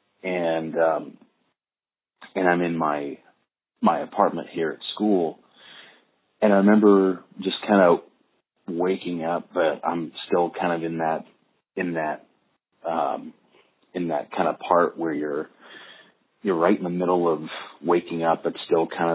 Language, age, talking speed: English, 30-49, 145 wpm